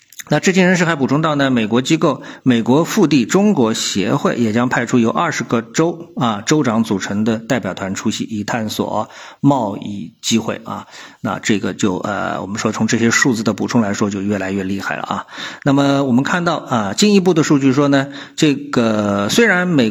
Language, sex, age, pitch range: Chinese, male, 50-69, 110-145 Hz